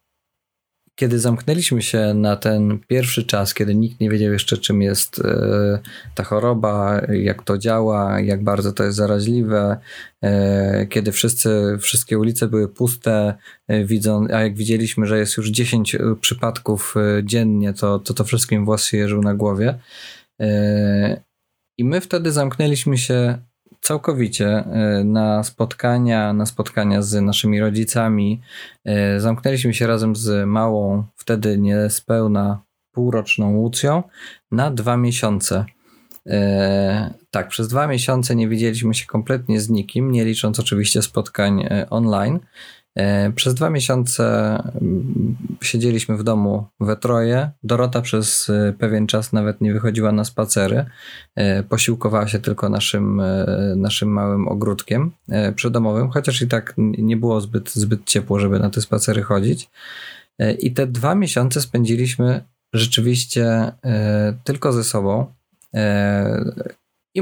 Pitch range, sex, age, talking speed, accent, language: 105-120 Hz, male, 20-39, 120 wpm, native, Polish